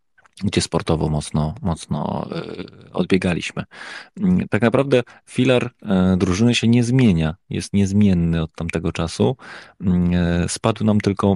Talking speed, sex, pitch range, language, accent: 105 wpm, male, 85-105 Hz, Polish, native